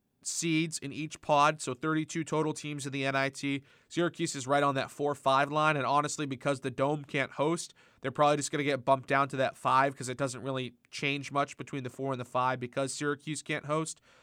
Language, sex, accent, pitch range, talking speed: English, male, American, 130-155 Hz, 220 wpm